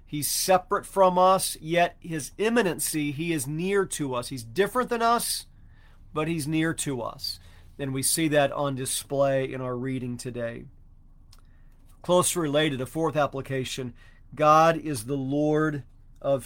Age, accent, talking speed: 40-59, American, 150 wpm